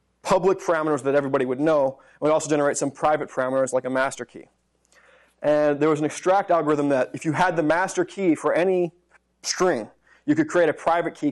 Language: English